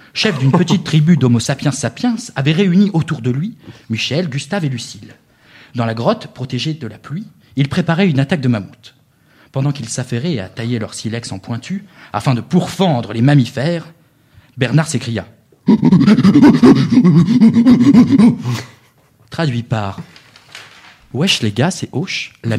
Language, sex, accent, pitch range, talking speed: French, male, French, 120-160 Hz, 140 wpm